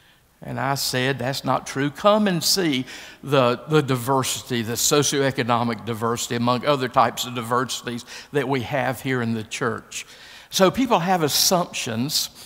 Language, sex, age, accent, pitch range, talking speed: English, male, 50-69, American, 125-155 Hz, 150 wpm